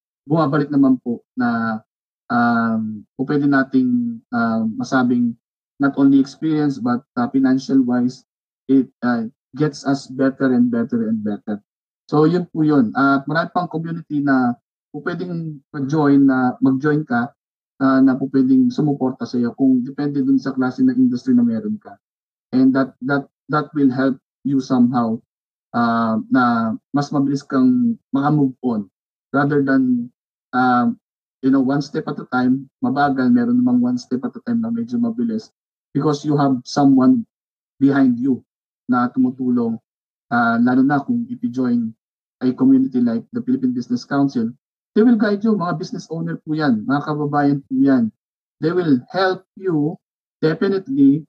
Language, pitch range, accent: Filipino, 130-220 Hz, native